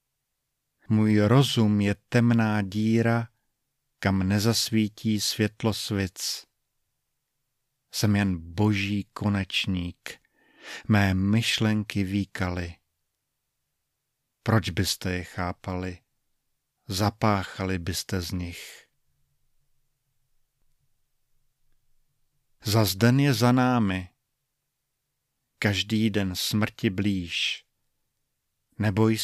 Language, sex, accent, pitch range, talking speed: Czech, male, native, 95-120 Hz, 70 wpm